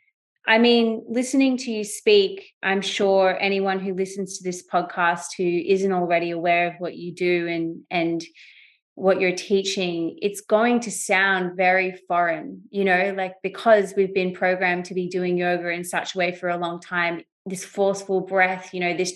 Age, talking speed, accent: 20-39, 180 wpm, Australian